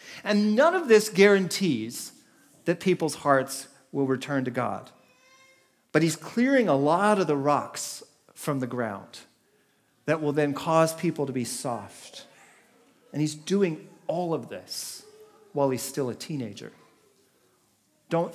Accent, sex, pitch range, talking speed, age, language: American, male, 140-185 Hz, 140 wpm, 40-59, English